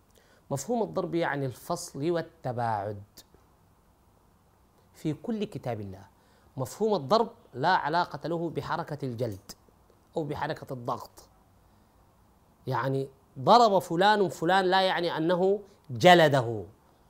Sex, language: male, Arabic